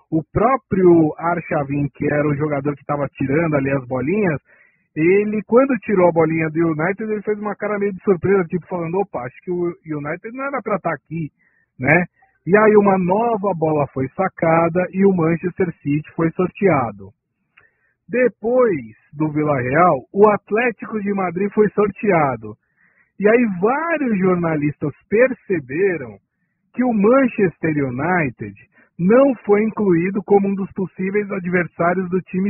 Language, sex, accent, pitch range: Portuguese, male, Brazilian, 155-210 Hz